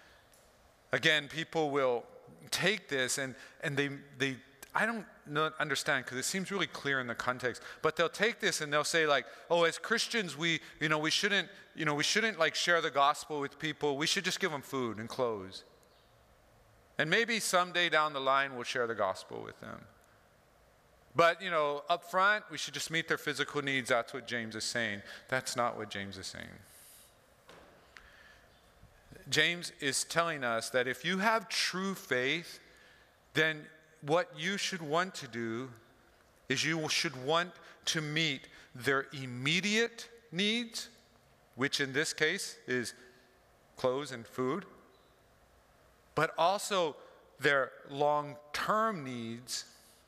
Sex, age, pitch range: male, 40-59, 130-170 Hz